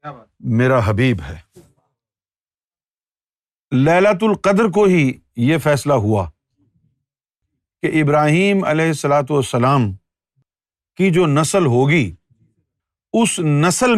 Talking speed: 90 wpm